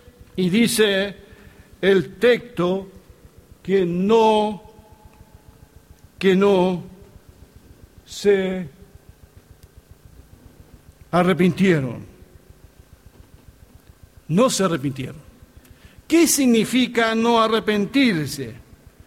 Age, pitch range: 60-79, 145-240 Hz